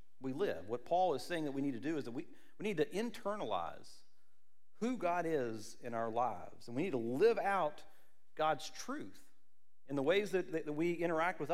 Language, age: English, 40-59